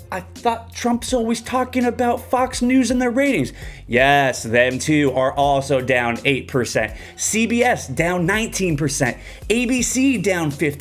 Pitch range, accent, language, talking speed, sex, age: 145-240 Hz, American, English, 130 wpm, male, 30-49